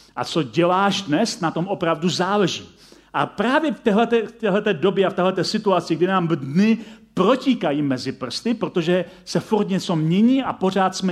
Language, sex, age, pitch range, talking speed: Czech, male, 40-59, 165-215 Hz, 165 wpm